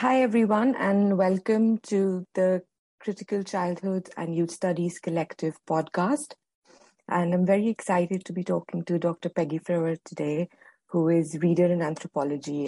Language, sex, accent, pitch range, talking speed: English, female, Indian, 160-185 Hz, 140 wpm